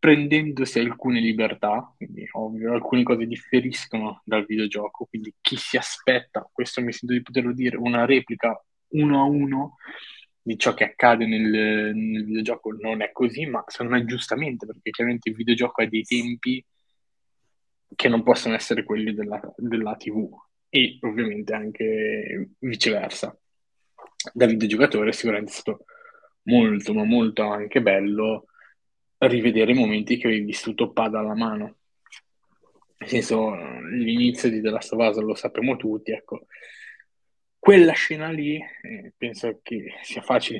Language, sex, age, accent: Italian, male, 20-39, native